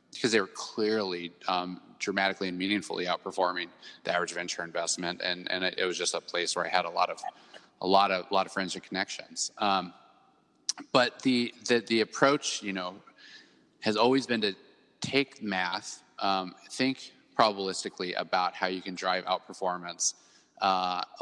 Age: 30-49